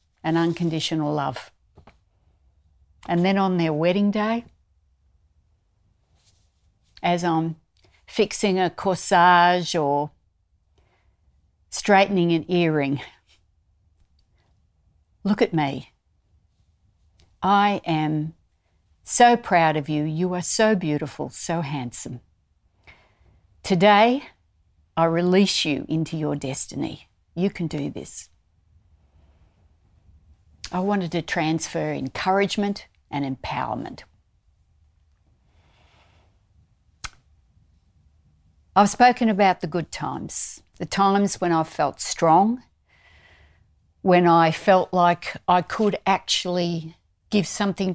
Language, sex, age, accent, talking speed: English, female, 50-69, Australian, 90 wpm